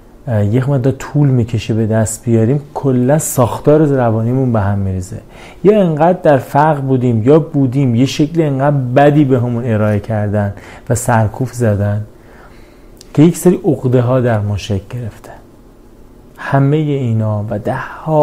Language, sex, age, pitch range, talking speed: Persian, male, 30-49, 115-140 Hz, 140 wpm